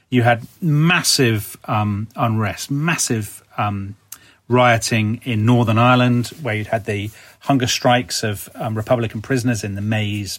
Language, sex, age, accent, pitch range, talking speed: English, male, 40-59, British, 110-145 Hz, 140 wpm